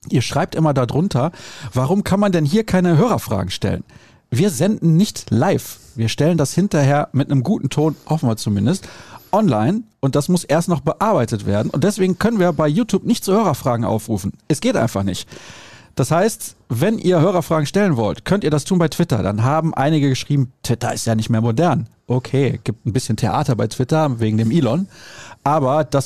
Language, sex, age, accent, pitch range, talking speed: German, male, 40-59, German, 125-170 Hz, 195 wpm